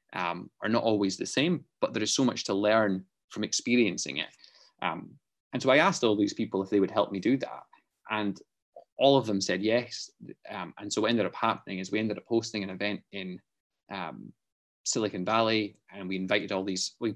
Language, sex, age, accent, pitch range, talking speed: English, male, 20-39, British, 100-115 Hz, 210 wpm